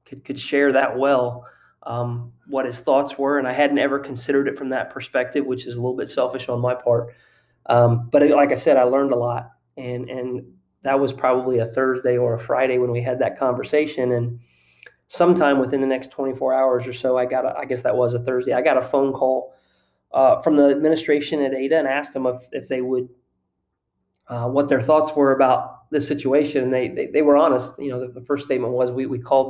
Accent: American